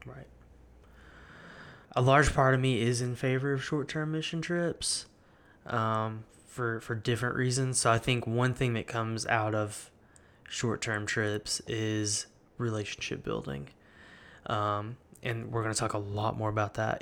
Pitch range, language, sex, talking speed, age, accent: 110-125 Hz, English, male, 150 wpm, 20-39, American